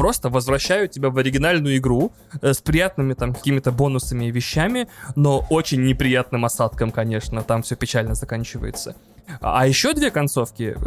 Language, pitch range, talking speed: Russian, 120-145 Hz, 150 wpm